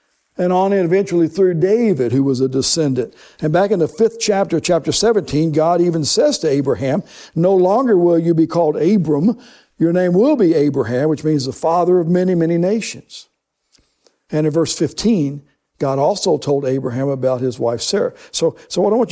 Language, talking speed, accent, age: English, 190 wpm, American, 60-79